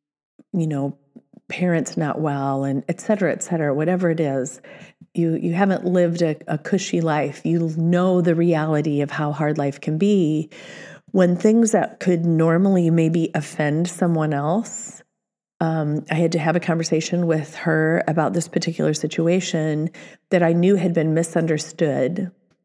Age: 40-59